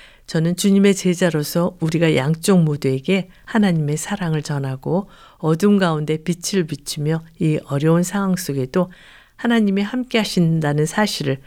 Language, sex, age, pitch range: Korean, female, 50-69, 150-190 Hz